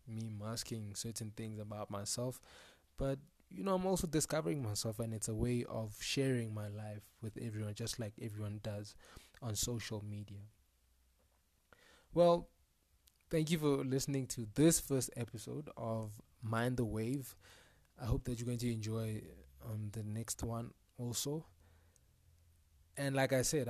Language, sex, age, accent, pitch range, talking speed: English, male, 20-39, South African, 105-125 Hz, 150 wpm